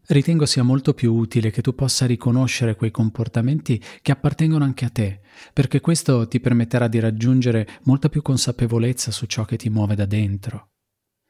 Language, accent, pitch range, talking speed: Italian, native, 110-135 Hz, 170 wpm